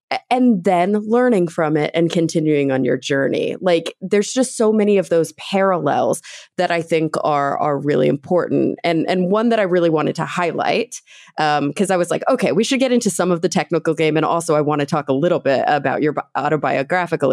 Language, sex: English, female